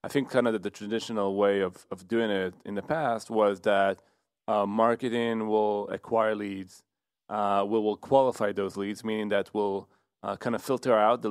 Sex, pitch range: male, 100-115 Hz